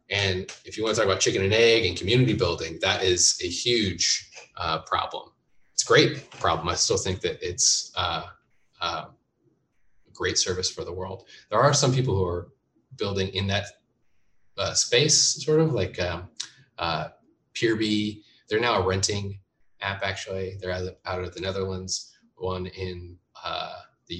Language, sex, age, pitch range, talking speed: English, male, 20-39, 90-115 Hz, 170 wpm